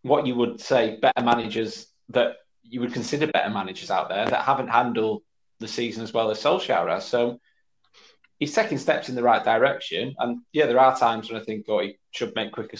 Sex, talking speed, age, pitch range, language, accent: male, 210 wpm, 20-39, 110-140 Hz, English, British